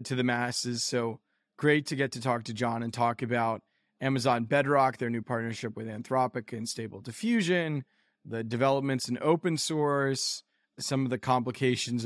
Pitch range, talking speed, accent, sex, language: 120-145 Hz, 165 wpm, American, male, English